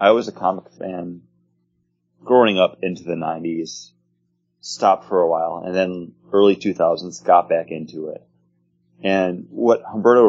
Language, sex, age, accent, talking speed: English, male, 30-49, American, 150 wpm